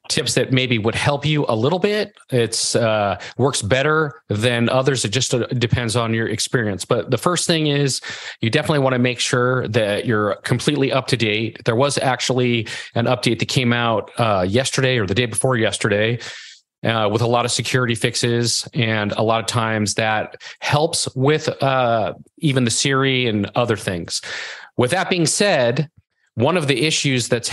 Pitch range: 115-140 Hz